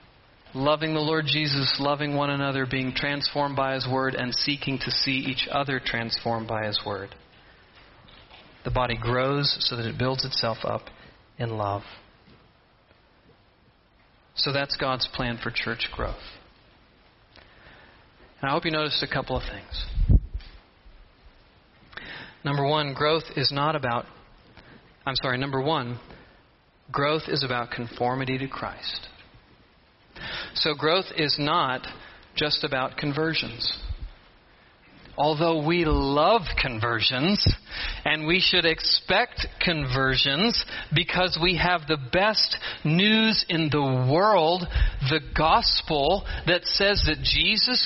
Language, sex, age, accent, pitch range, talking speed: English, male, 40-59, American, 125-165 Hz, 120 wpm